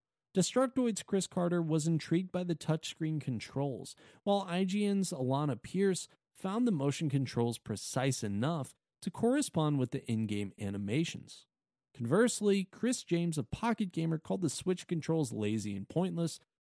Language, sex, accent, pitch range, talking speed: English, male, American, 125-180 Hz, 135 wpm